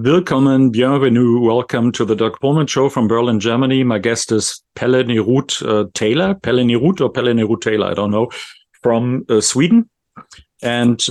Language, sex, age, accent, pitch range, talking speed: English, male, 50-69, German, 110-130 Hz, 170 wpm